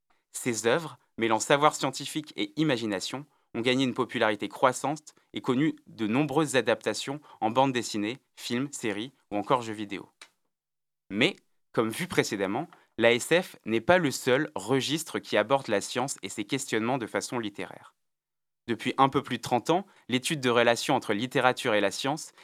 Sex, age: male, 20-39